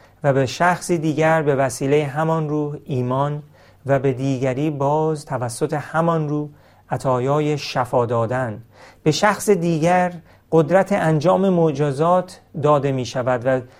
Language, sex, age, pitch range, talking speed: Persian, male, 40-59, 125-160 Hz, 125 wpm